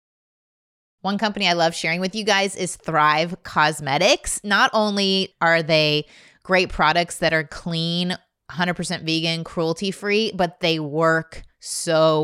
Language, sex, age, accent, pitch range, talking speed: English, female, 20-39, American, 155-190 Hz, 130 wpm